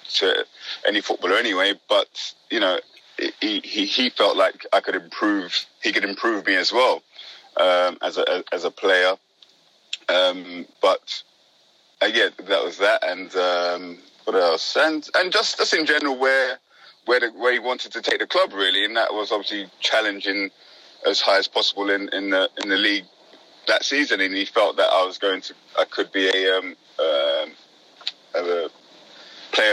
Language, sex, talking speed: English, male, 180 wpm